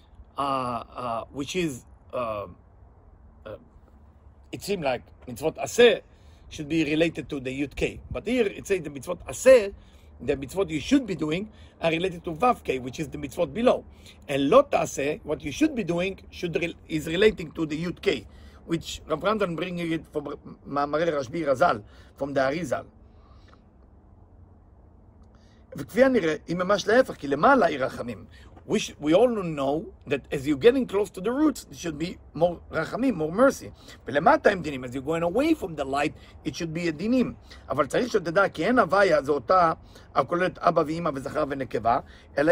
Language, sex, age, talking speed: English, male, 50-69, 165 wpm